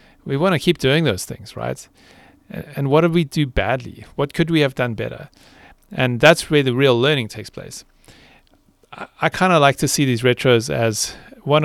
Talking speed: 195 wpm